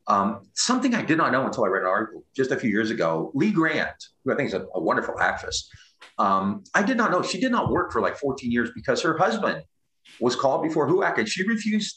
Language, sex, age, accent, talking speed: English, male, 40-59, American, 245 wpm